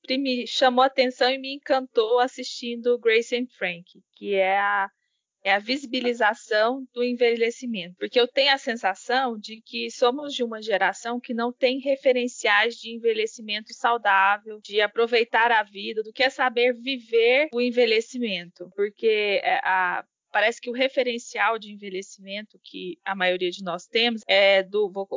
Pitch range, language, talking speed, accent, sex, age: 210-250 Hz, Portuguese, 155 wpm, Brazilian, female, 20-39